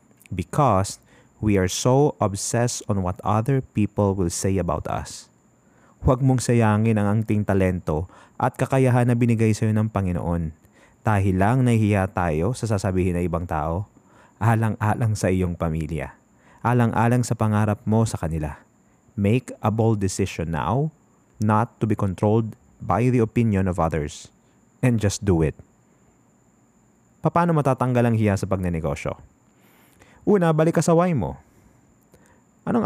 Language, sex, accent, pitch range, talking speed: Filipino, male, native, 95-120 Hz, 135 wpm